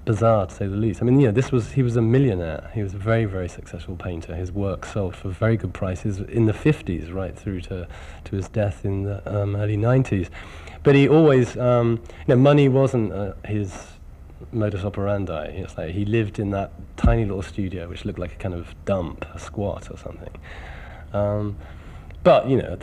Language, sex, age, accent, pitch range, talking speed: English, male, 40-59, British, 85-110 Hz, 210 wpm